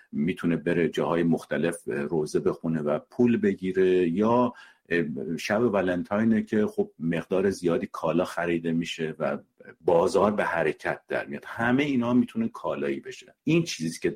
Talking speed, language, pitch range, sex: 145 wpm, Persian, 85-125 Hz, male